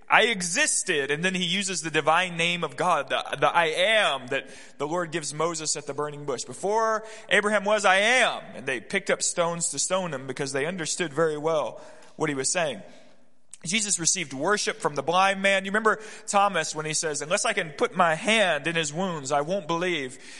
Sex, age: male, 30-49